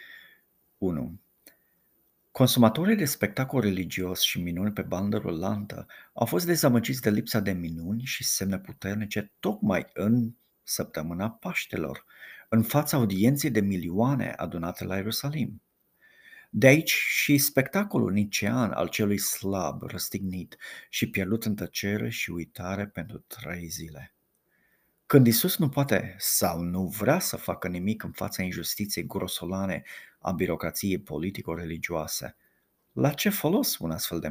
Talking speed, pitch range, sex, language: 130 wpm, 90-125 Hz, male, Romanian